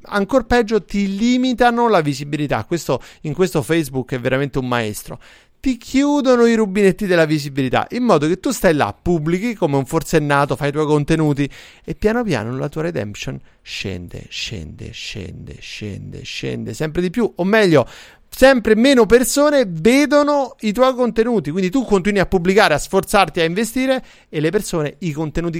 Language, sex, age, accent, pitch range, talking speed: Italian, male, 30-49, native, 140-210 Hz, 165 wpm